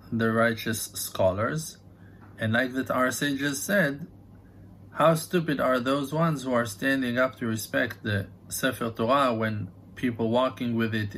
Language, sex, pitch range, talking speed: English, male, 100-130 Hz, 150 wpm